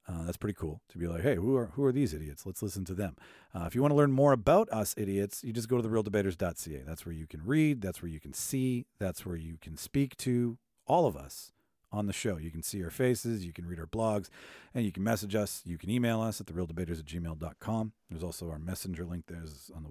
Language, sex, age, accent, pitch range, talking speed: English, male, 40-59, American, 90-125 Hz, 260 wpm